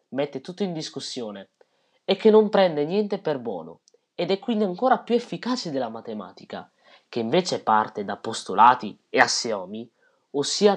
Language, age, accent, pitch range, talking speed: Italian, 20-39, native, 130-200 Hz, 150 wpm